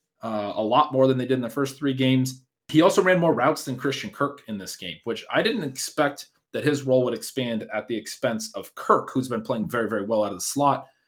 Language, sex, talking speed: English, male, 255 wpm